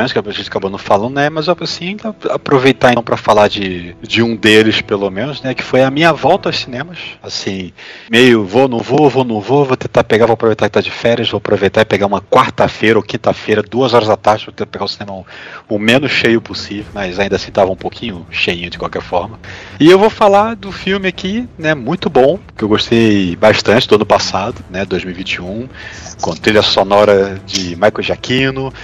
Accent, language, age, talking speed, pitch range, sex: Brazilian, Portuguese, 40-59, 210 wpm, 100-135 Hz, male